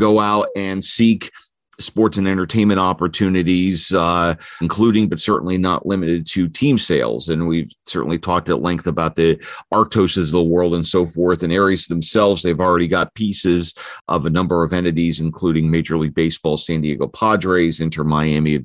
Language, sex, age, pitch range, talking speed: English, male, 40-59, 85-105 Hz, 170 wpm